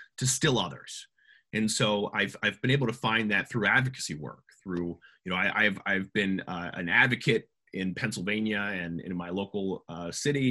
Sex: male